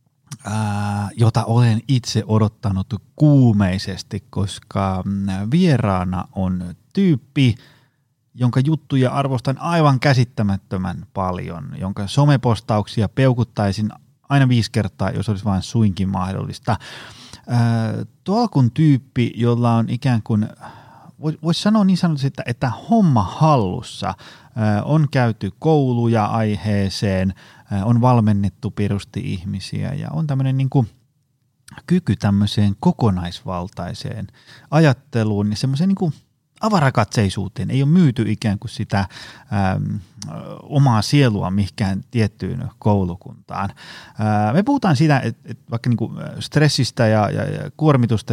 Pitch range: 100-140 Hz